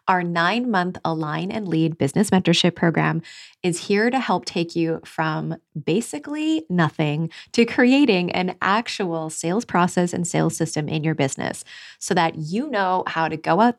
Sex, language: female, English